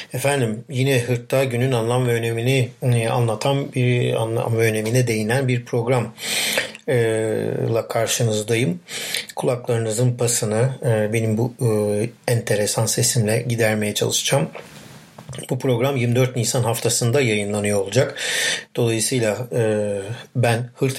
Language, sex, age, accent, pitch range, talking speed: Turkish, male, 50-69, native, 110-125 Hz, 95 wpm